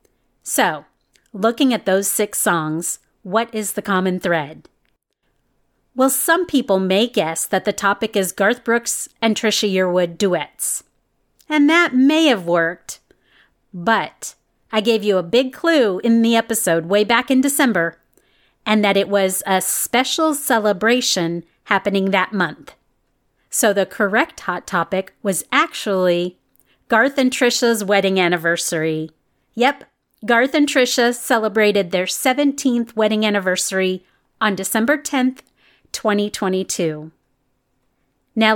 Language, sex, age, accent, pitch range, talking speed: English, female, 30-49, American, 185-245 Hz, 125 wpm